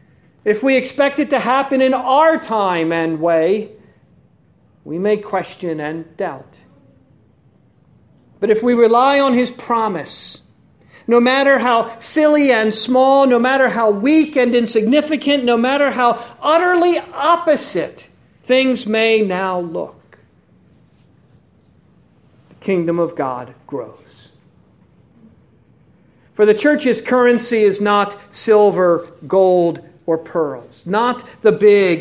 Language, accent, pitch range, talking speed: English, American, 190-275 Hz, 115 wpm